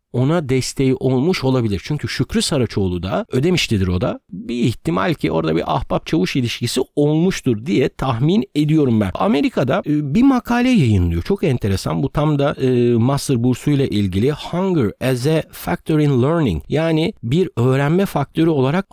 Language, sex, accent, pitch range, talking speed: Turkish, male, native, 120-170 Hz, 150 wpm